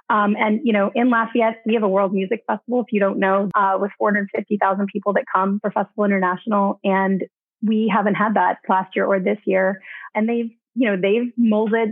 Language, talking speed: English, 205 wpm